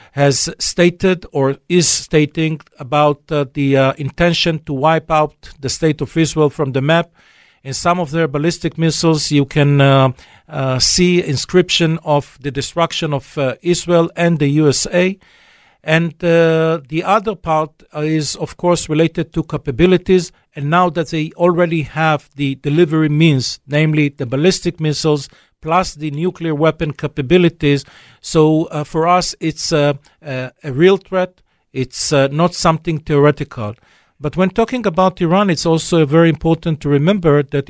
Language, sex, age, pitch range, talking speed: English, male, 50-69, 145-170 Hz, 155 wpm